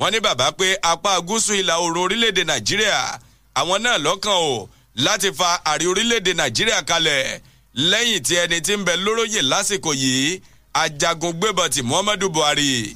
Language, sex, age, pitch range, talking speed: English, male, 50-69, 150-195 Hz, 145 wpm